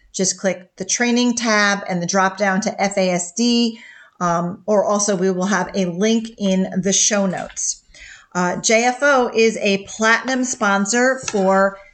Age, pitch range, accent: 40-59, 190-225 Hz, American